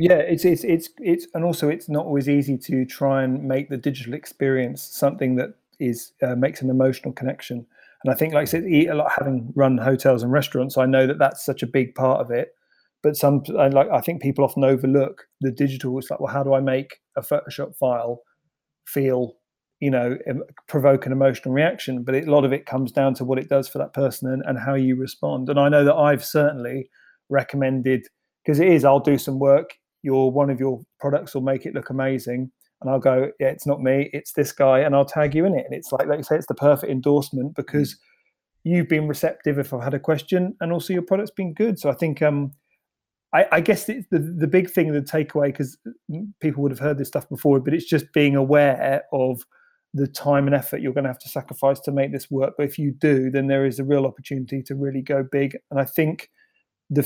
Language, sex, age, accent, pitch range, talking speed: English, male, 30-49, British, 135-150 Hz, 235 wpm